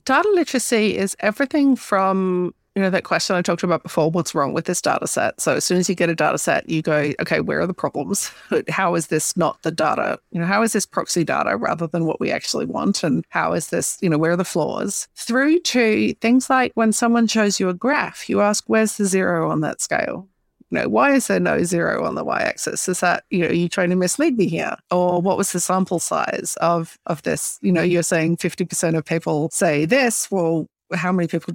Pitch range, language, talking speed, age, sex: 180-225 Hz, English, 240 wpm, 30-49, female